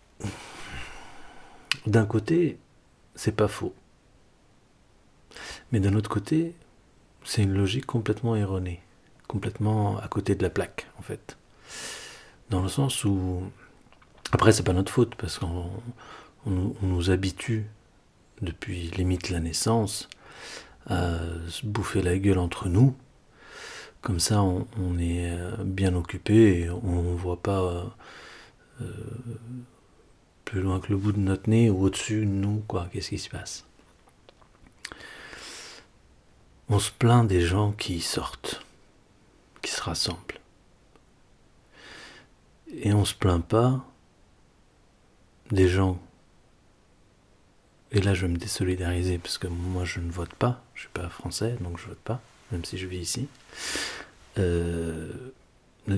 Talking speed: 135 wpm